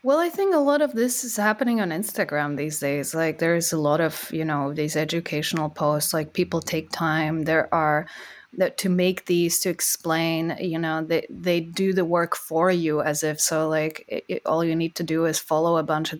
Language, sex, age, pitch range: English, female, 20-39, 155-185 Hz